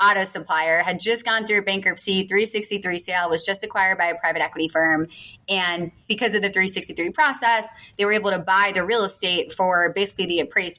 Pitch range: 185-225 Hz